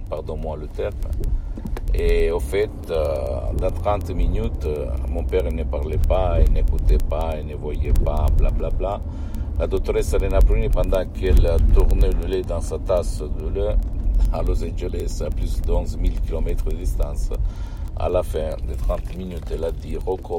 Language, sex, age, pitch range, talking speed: Italian, male, 60-79, 75-90 Hz, 180 wpm